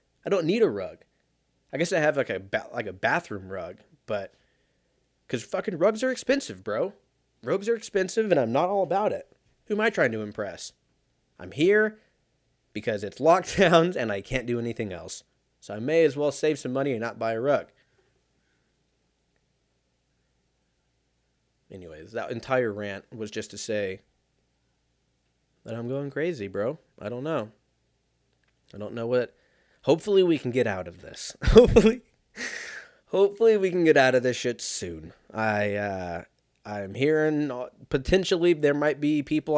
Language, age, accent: English, 20-39, American